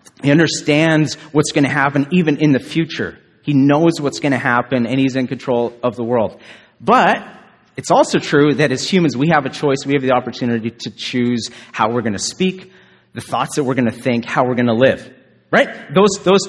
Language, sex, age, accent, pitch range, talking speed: English, male, 30-49, American, 120-155 Hz, 220 wpm